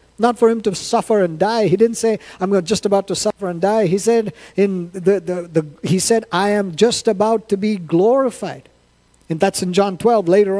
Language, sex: English, male